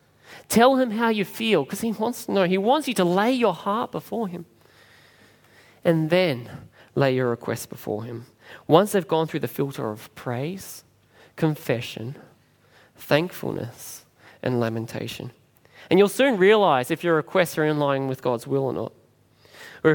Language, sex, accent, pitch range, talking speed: English, male, Australian, 135-200 Hz, 160 wpm